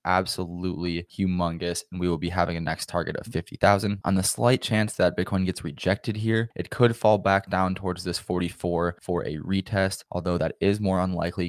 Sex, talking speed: male, 195 wpm